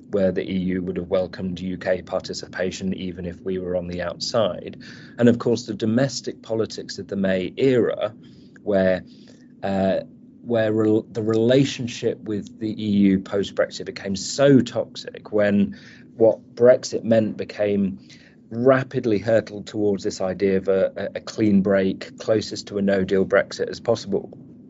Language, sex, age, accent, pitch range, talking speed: English, male, 30-49, British, 90-110 Hz, 145 wpm